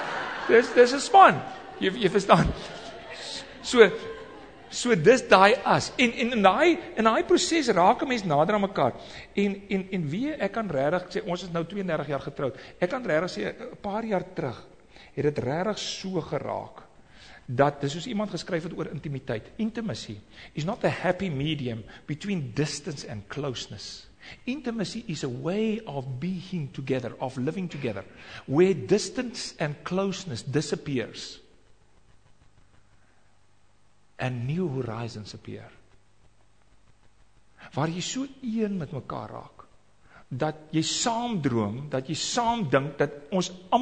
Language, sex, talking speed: English, male, 135 wpm